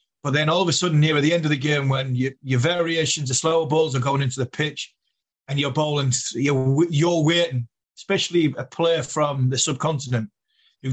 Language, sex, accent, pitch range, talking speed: English, male, British, 135-160 Hz, 210 wpm